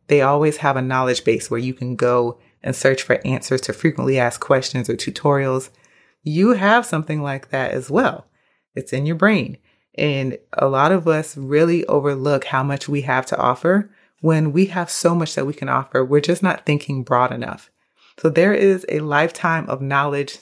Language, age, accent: English, 30-49, American